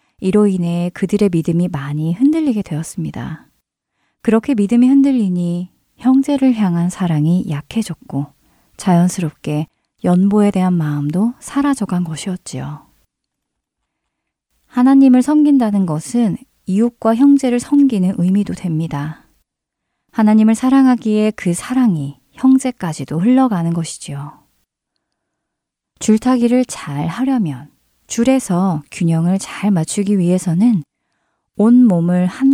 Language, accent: English, Korean